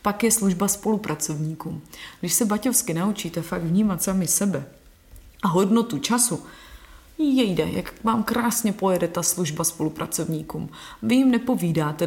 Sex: female